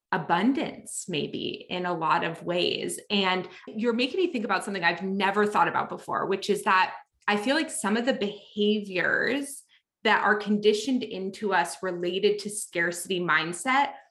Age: 20-39